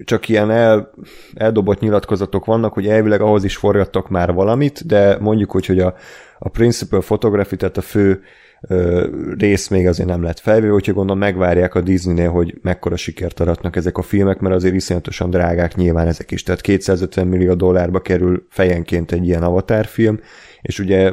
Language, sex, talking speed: Hungarian, male, 170 wpm